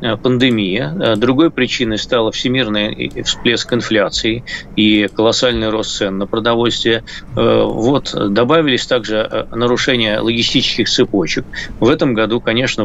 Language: Russian